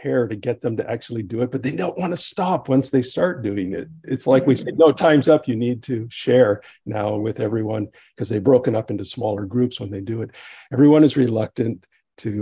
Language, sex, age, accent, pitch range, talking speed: English, male, 50-69, American, 105-130 Hz, 225 wpm